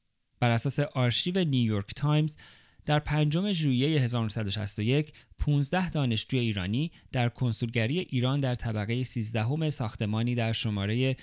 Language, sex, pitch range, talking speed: Persian, male, 110-140 Hz, 110 wpm